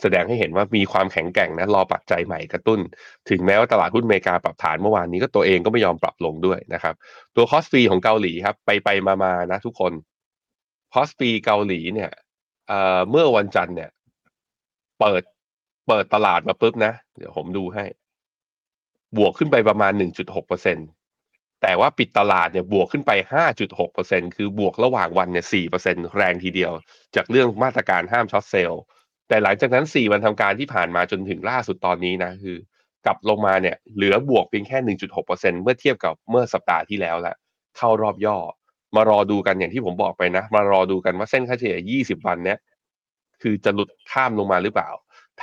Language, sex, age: Thai, male, 20-39